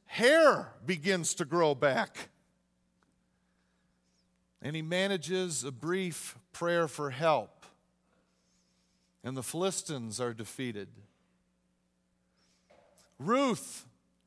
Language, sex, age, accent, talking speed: English, male, 50-69, American, 80 wpm